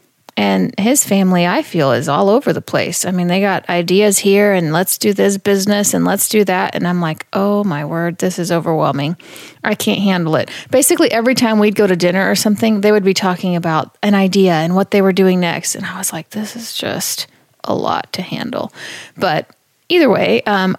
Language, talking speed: English, 215 wpm